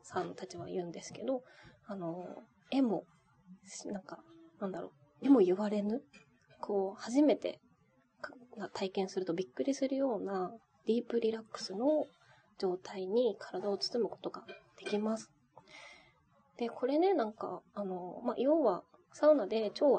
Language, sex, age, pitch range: Japanese, female, 20-39, 195-250 Hz